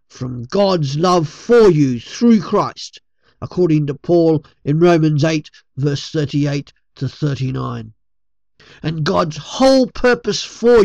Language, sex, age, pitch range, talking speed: English, male, 50-69, 145-225 Hz, 120 wpm